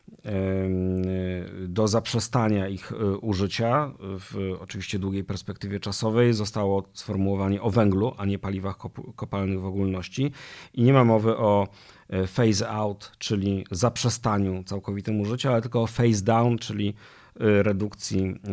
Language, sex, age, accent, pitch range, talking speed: Polish, male, 40-59, native, 95-110 Hz, 120 wpm